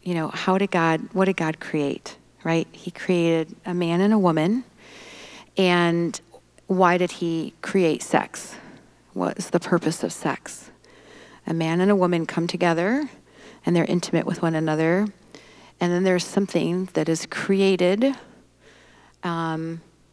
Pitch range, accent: 175-210 Hz, American